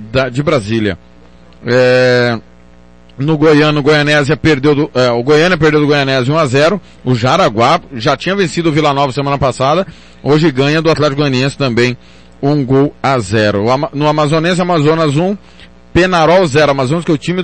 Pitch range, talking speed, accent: 125-180 Hz, 175 wpm, Brazilian